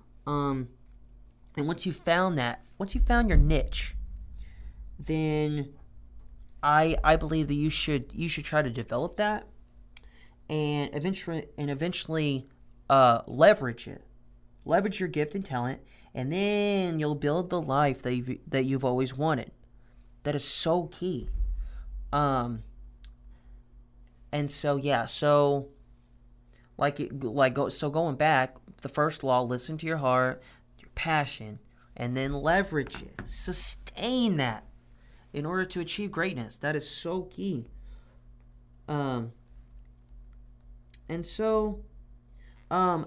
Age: 30-49